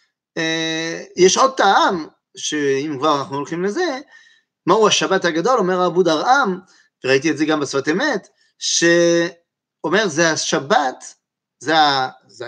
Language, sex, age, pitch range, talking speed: French, male, 30-49, 155-205 Hz, 135 wpm